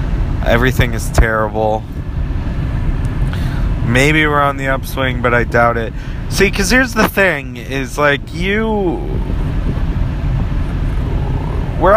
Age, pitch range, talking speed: 30-49, 115-145 Hz, 105 wpm